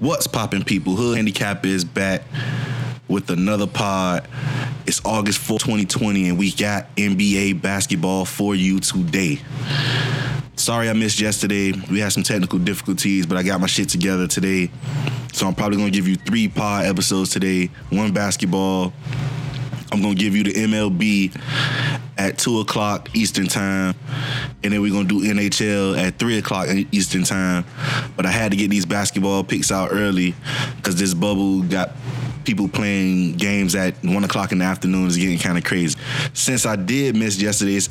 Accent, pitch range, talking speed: American, 95-120 Hz, 170 wpm